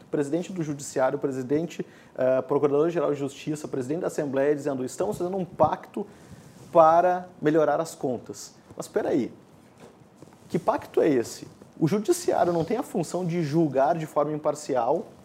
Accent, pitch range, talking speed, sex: Brazilian, 140-190 Hz, 150 wpm, male